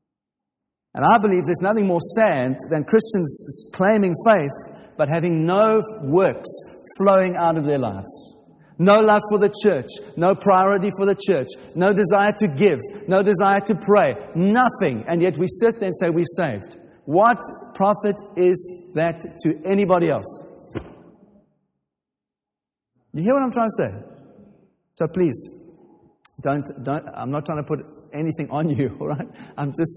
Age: 50-69